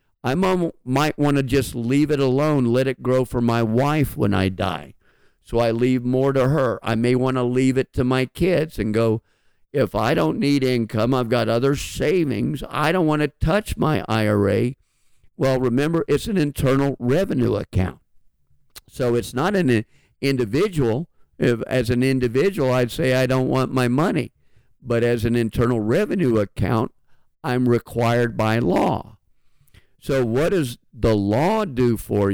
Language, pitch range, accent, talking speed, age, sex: English, 110-135 Hz, American, 165 wpm, 50-69, male